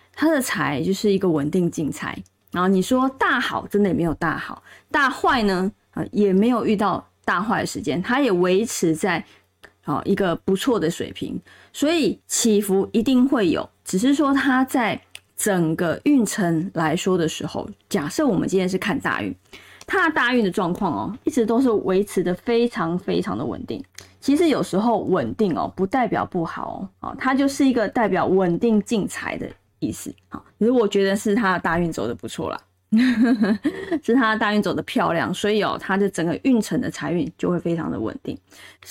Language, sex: Chinese, female